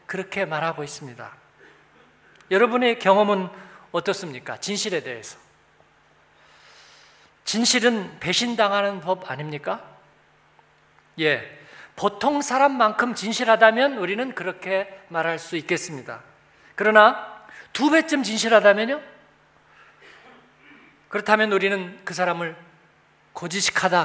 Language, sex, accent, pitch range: Korean, male, native, 175-265 Hz